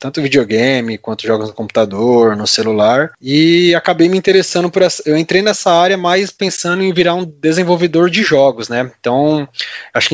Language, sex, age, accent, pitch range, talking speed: Portuguese, male, 20-39, Brazilian, 130-165 Hz, 180 wpm